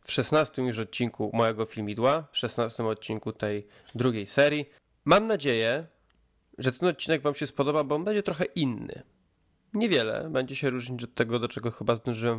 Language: Polish